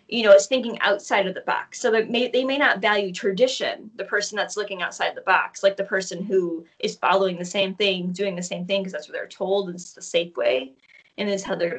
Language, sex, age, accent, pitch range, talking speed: English, female, 20-39, American, 195-255 Hz, 250 wpm